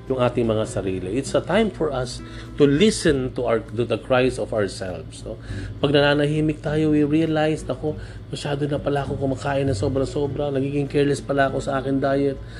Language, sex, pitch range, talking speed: Filipino, male, 115-140 Hz, 175 wpm